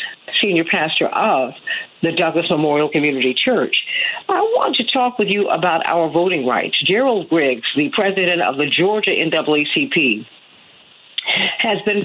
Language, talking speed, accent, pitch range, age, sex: English, 140 wpm, American, 165-235 Hz, 50-69, female